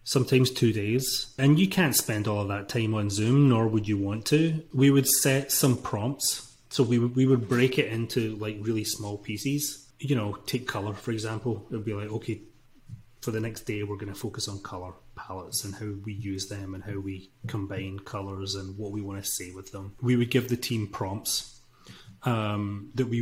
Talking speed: 215 wpm